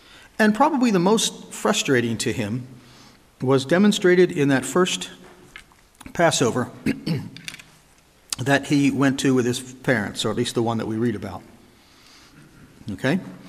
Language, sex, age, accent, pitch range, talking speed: English, male, 50-69, American, 125-185 Hz, 135 wpm